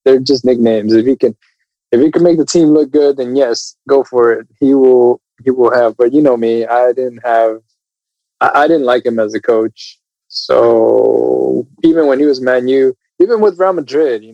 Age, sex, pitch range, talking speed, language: 20-39, male, 115-150 Hz, 210 wpm, English